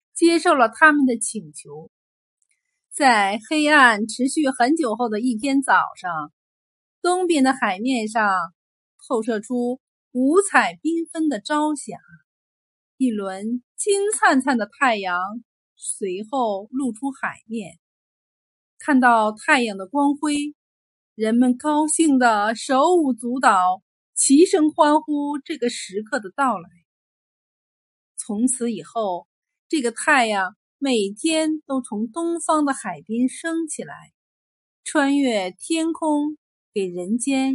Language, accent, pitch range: Chinese, native, 210-300 Hz